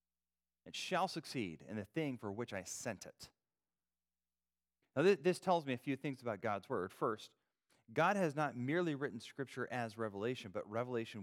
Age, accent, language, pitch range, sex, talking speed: 30-49, American, English, 85-135 Hz, male, 170 wpm